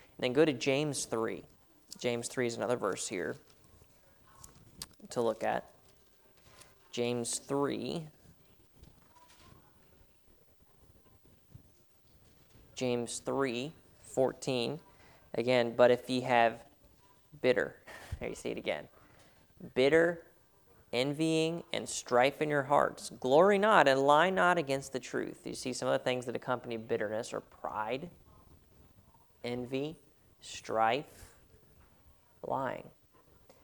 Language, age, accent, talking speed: English, 20-39, American, 105 wpm